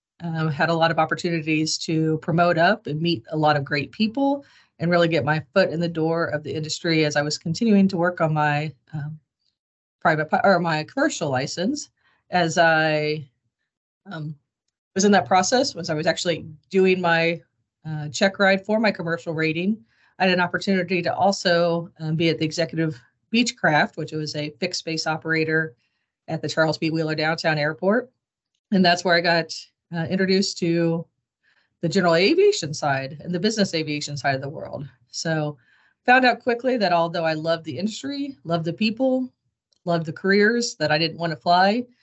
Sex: female